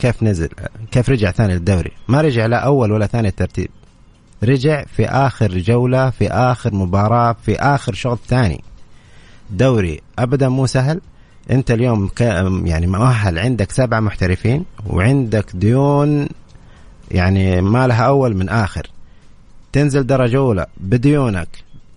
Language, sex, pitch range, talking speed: English, male, 100-130 Hz, 125 wpm